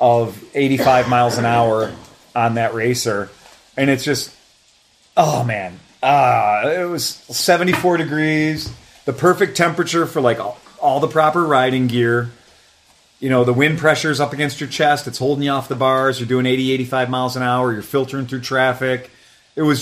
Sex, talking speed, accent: male, 175 wpm, American